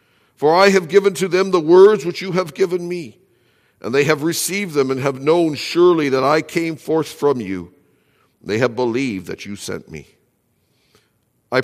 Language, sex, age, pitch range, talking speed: English, male, 60-79, 110-170 Hz, 190 wpm